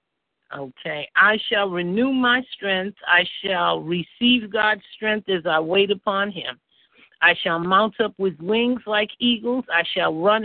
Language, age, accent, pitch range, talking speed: English, 50-69, American, 185-220 Hz, 155 wpm